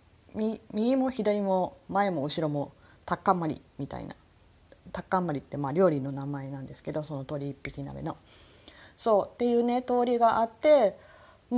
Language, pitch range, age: Japanese, 175-230 Hz, 30-49